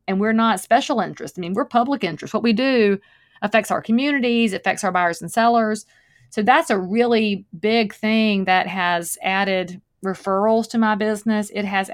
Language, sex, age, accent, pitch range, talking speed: English, female, 40-59, American, 190-225 Hz, 180 wpm